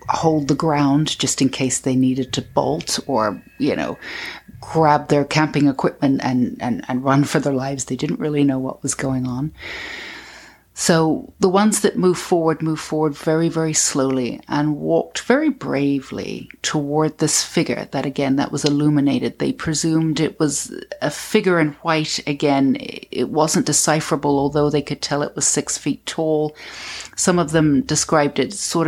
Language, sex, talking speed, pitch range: English, female, 170 wpm, 140-160 Hz